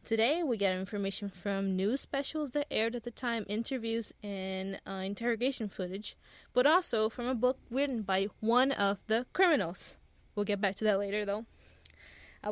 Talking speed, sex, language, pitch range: 175 wpm, female, English, 195-250 Hz